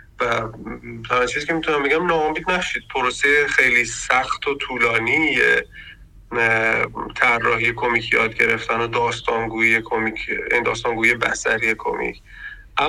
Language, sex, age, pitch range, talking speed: Persian, male, 30-49, 115-140 Hz, 105 wpm